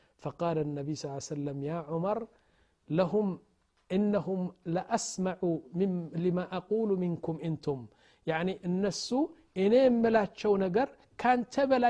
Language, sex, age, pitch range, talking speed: Amharic, male, 50-69, 160-200 Hz, 120 wpm